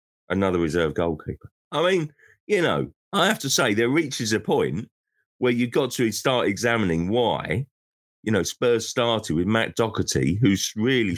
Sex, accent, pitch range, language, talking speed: male, British, 85-130 Hz, English, 165 wpm